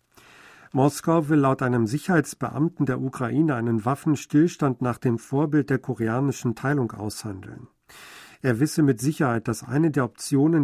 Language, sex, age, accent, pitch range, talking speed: German, male, 50-69, German, 125-150 Hz, 135 wpm